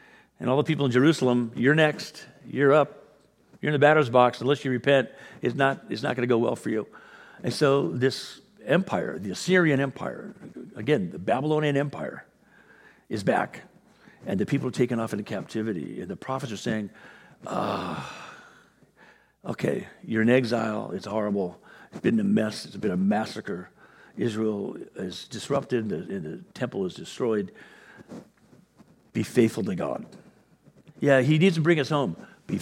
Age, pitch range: 50-69, 115-150 Hz